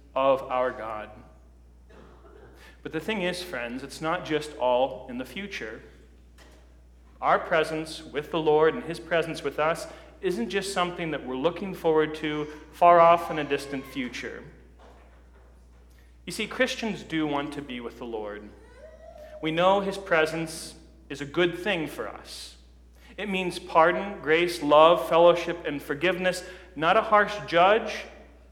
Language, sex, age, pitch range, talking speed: English, male, 40-59, 130-190 Hz, 150 wpm